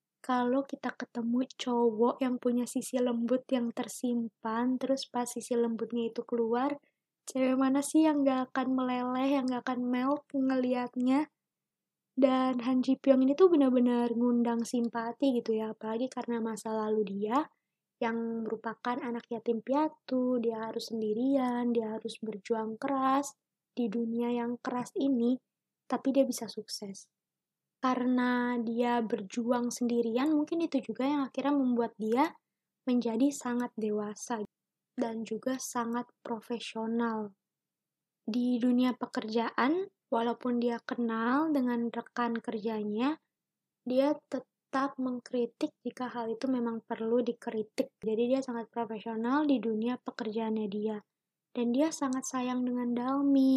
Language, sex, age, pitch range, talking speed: Indonesian, female, 20-39, 230-260 Hz, 130 wpm